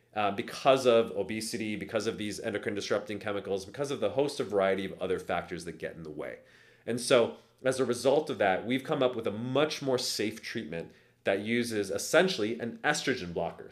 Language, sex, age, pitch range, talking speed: English, male, 30-49, 100-130 Hz, 195 wpm